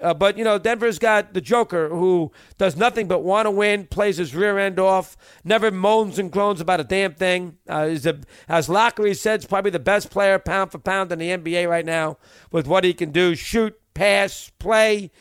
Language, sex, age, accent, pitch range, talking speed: English, male, 50-69, American, 180-220 Hz, 215 wpm